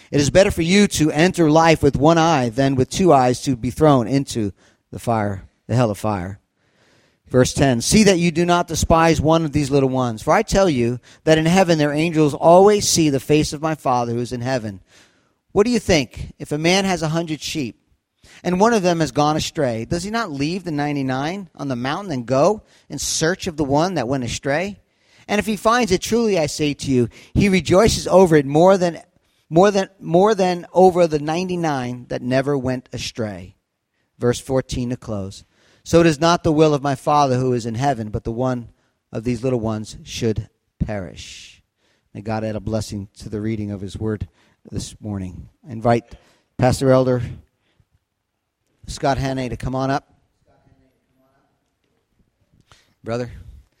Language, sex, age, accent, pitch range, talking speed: English, male, 40-59, American, 115-165 Hz, 195 wpm